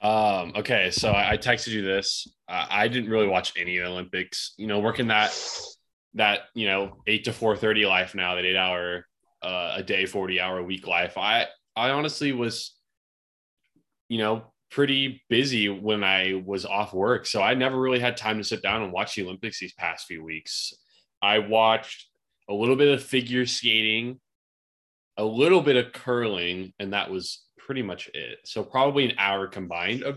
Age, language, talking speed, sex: 20-39, English, 185 wpm, male